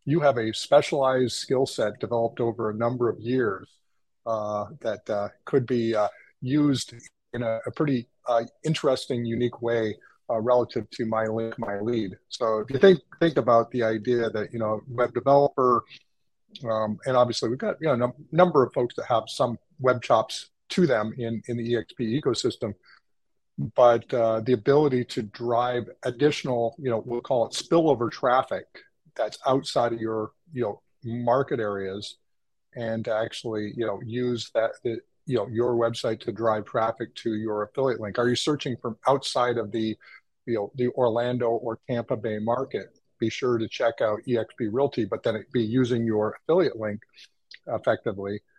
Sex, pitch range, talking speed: male, 110-125 Hz, 175 wpm